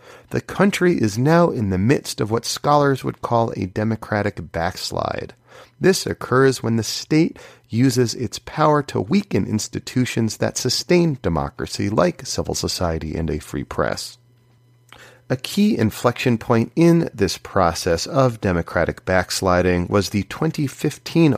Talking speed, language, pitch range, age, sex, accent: 140 wpm, English, 105-140 Hz, 30-49, male, American